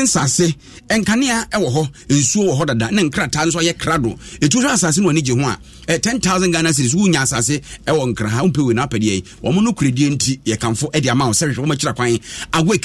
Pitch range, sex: 130-175 Hz, male